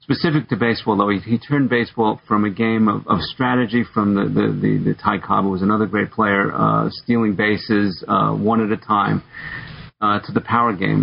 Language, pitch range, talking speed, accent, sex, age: English, 105-125 Hz, 210 wpm, American, male, 50-69